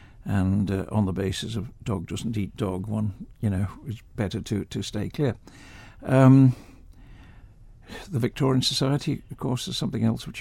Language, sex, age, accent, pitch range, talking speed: English, male, 60-79, British, 100-120 Hz, 165 wpm